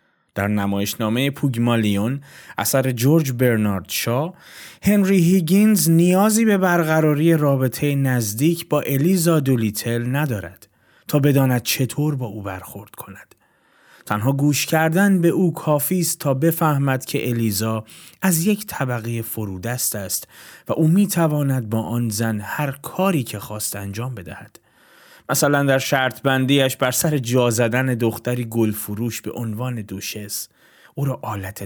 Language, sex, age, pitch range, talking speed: Persian, male, 30-49, 115-160 Hz, 130 wpm